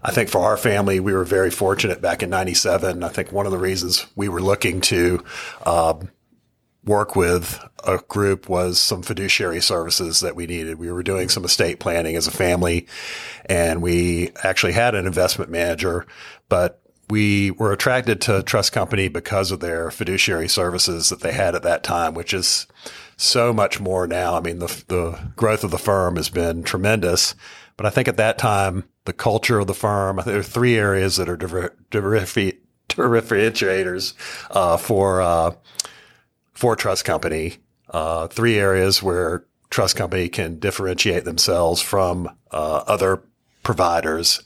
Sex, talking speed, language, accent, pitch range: male, 160 wpm, English, American, 85-100 Hz